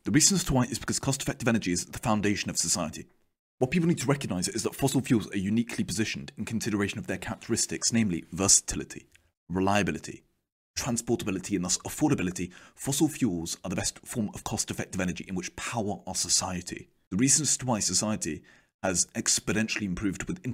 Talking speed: 175 wpm